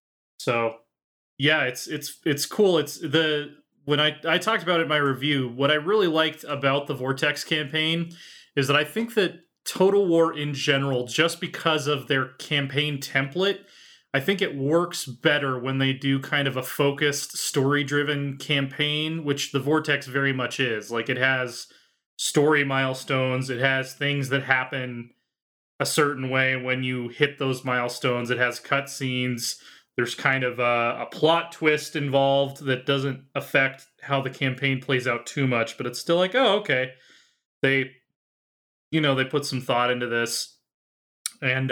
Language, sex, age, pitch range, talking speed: English, male, 30-49, 130-150 Hz, 165 wpm